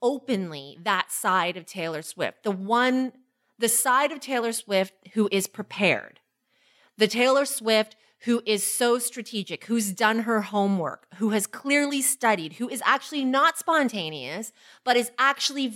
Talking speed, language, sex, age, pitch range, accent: 150 wpm, English, female, 30-49, 205-280 Hz, American